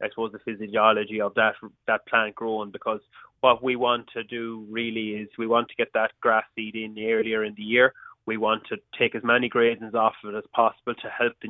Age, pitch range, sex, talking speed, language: 20-39, 110-120 Hz, male, 230 wpm, English